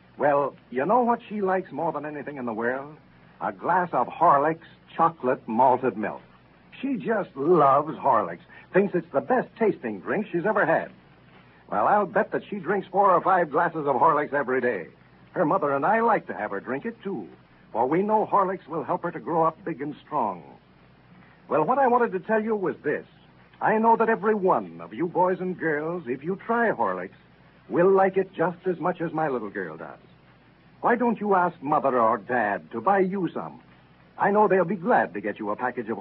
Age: 60-79